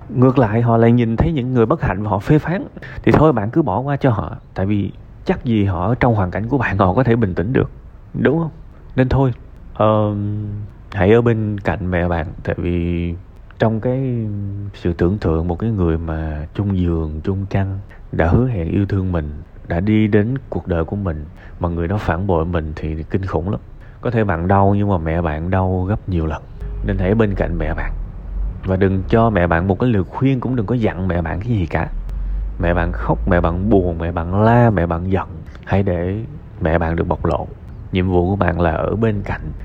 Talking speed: 225 wpm